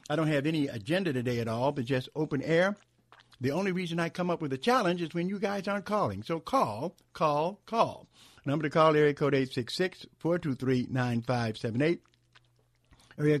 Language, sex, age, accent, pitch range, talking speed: English, male, 60-79, American, 120-165 Hz, 170 wpm